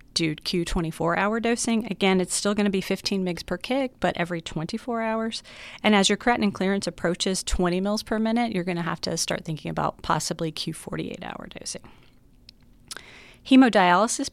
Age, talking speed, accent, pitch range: 30-49, 165 wpm, American, 175-220 Hz